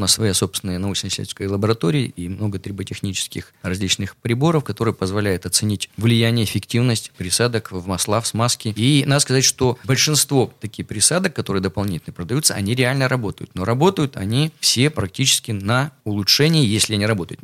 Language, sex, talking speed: Russian, male, 150 wpm